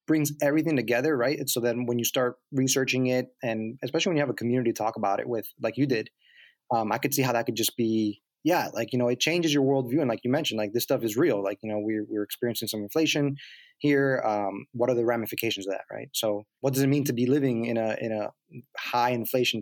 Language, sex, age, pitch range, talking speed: English, male, 20-39, 115-135 Hz, 255 wpm